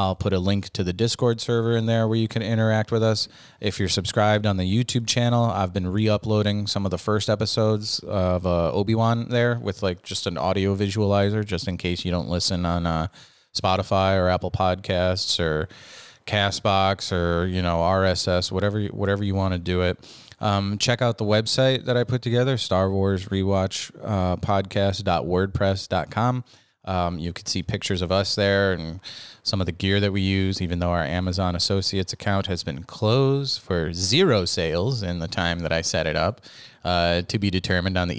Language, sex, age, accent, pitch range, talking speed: English, male, 30-49, American, 90-110 Hz, 190 wpm